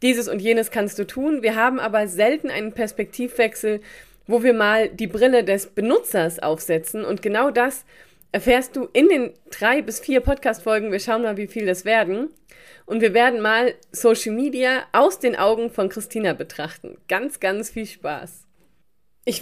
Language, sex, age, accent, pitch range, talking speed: German, female, 20-39, German, 200-250 Hz, 170 wpm